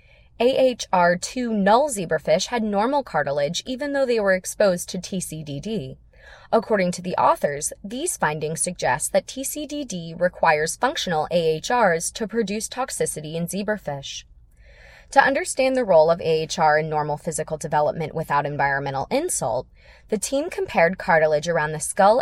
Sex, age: female, 20-39